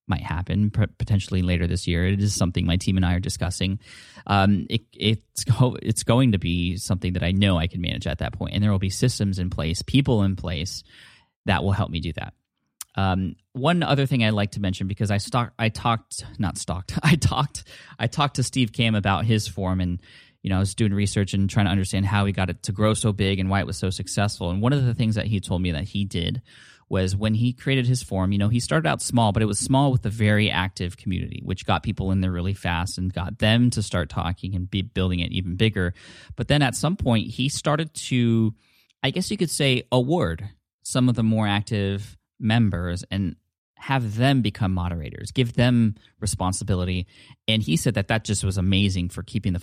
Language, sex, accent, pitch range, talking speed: English, male, American, 95-115 Hz, 230 wpm